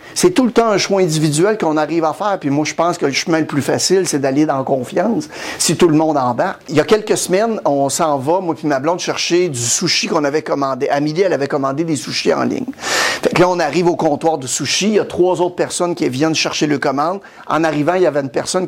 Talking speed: 270 wpm